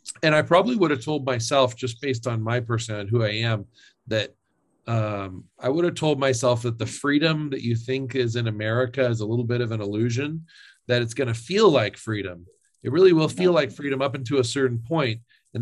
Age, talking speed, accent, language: 40-59, 220 wpm, American, English